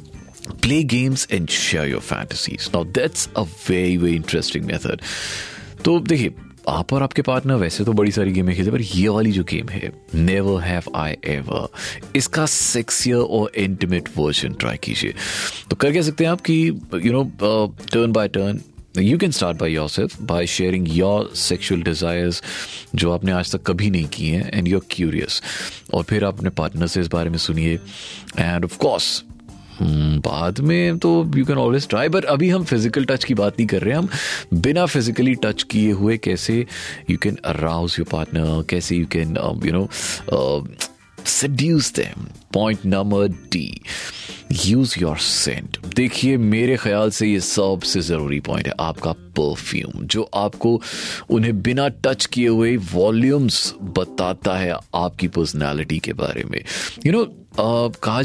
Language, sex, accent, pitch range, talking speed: Hindi, male, native, 85-125 Hz, 160 wpm